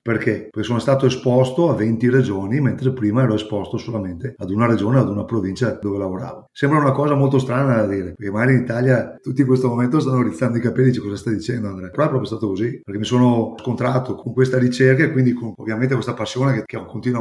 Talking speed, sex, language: 225 wpm, male, Italian